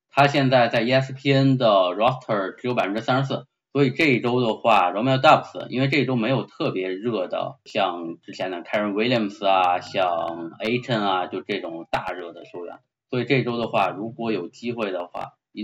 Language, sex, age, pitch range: English, male, 20-39, 95-130 Hz